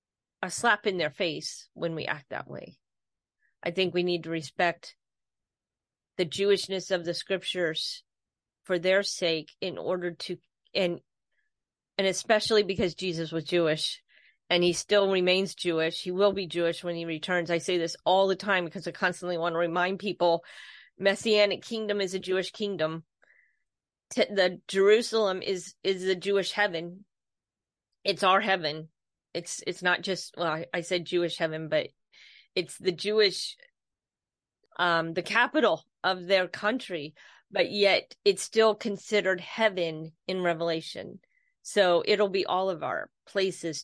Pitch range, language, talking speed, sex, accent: 170-200 Hz, English, 150 wpm, female, American